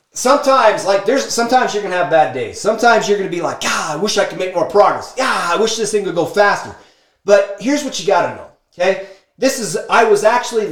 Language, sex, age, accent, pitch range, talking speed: English, male, 30-49, American, 160-220 Hz, 250 wpm